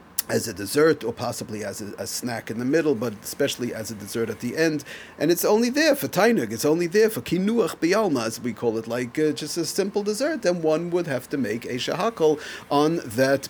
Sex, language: male, English